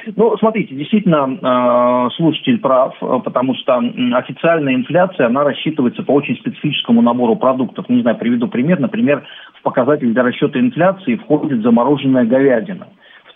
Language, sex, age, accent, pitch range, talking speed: Russian, male, 40-59, native, 130-215 Hz, 135 wpm